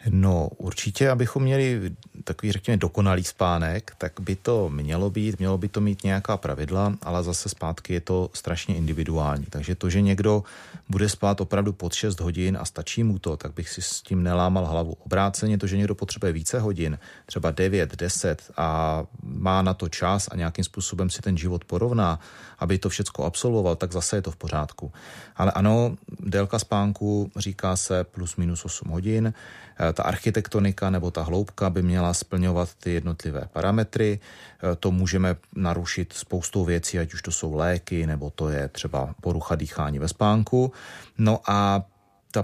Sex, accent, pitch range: male, native, 85-100 Hz